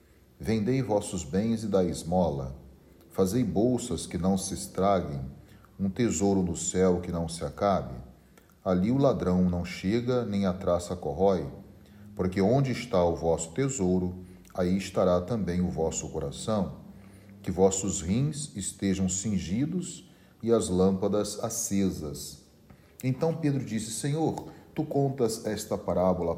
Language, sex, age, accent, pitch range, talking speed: Portuguese, male, 40-59, Brazilian, 90-110 Hz, 130 wpm